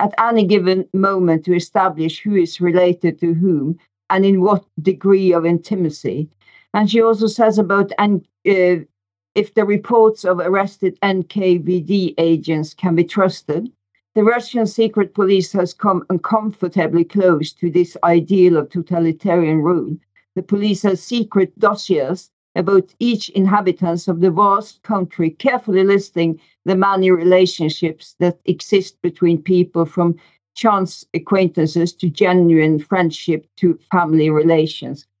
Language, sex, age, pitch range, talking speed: English, female, 50-69, 170-200 Hz, 130 wpm